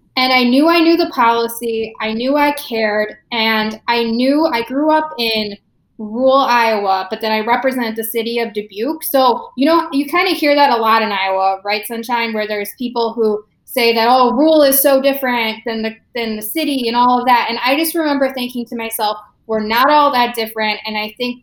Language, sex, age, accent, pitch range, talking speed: English, female, 10-29, American, 220-260 Hz, 215 wpm